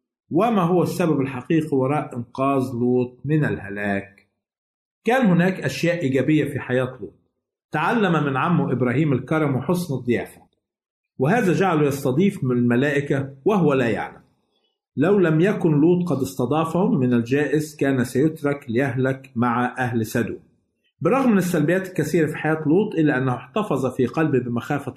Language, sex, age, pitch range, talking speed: Arabic, male, 50-69, 125-160 Hz, 140 wpm